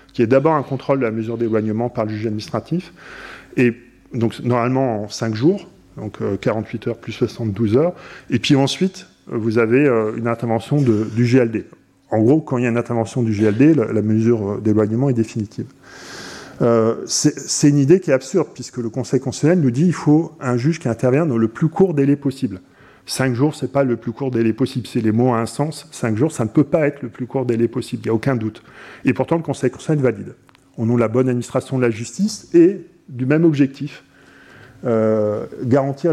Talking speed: 215 wpm